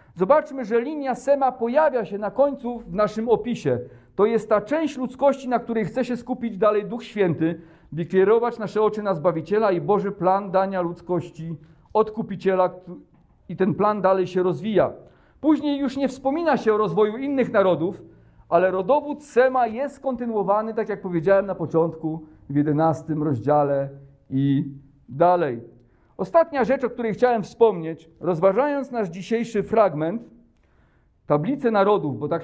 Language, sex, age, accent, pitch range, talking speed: Polish, male, 50-69, native, 155-225 Hz, 150 wpm